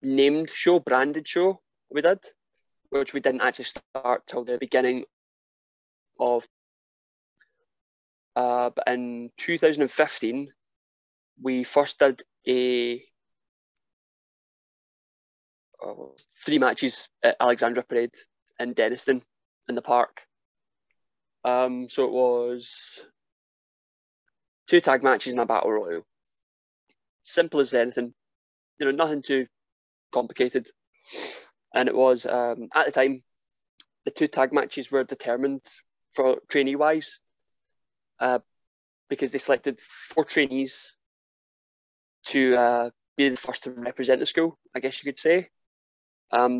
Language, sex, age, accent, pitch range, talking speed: English, male, 20-39, British, 120-140 Hz, 115 wpm